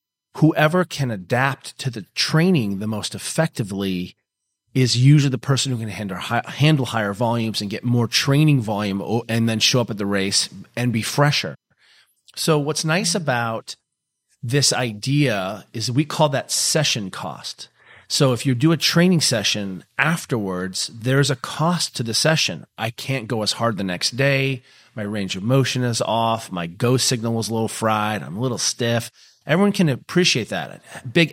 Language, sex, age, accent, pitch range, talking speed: English, male, 40-59, American, 110-145 Hz, 170 wpm